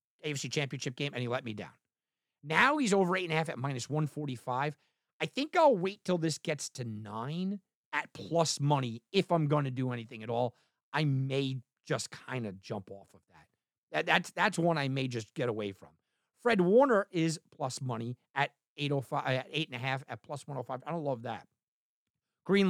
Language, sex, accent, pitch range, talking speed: English, male, American, 125-185 Hz, 180 wpm